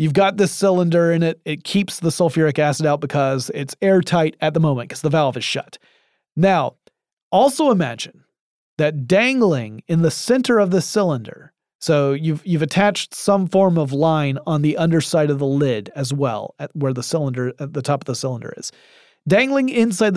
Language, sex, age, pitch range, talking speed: English, male, 30-49, 145-185 Hz, 185 wpm